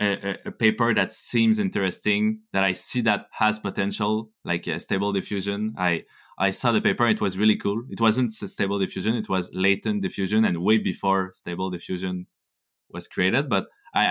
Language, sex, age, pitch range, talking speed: English, male, 20-39, 95-120 Hz, 175 wpm